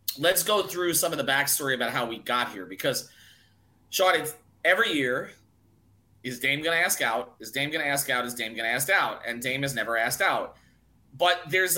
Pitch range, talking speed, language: 120-155 Hz, 205 wpm, English